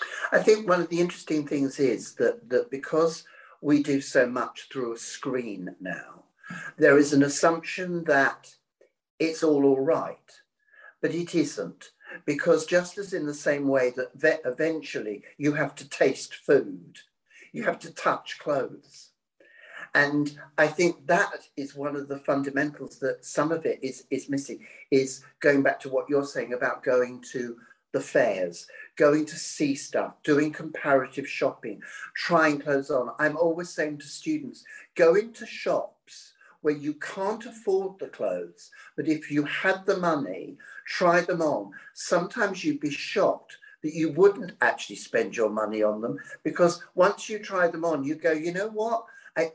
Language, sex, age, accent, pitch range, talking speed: English, male, 60-79, British, 145-180 Hz, 165 wpm